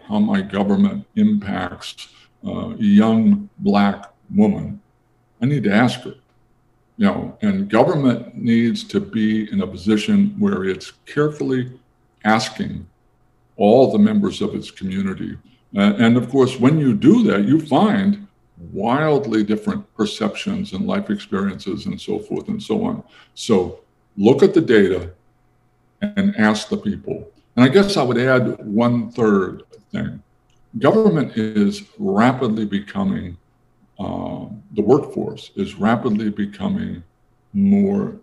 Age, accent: 60-79, American